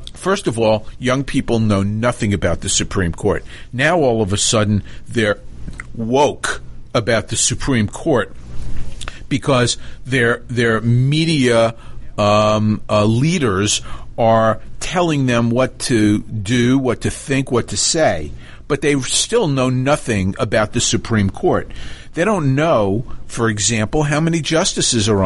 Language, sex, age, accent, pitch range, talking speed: English, male, 50-69, American, 105-140 Hz, 140 wpm